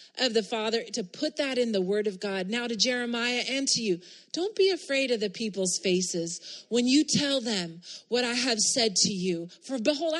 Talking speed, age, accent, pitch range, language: 210 wpm, 30-49, American, 205-275 Hz, English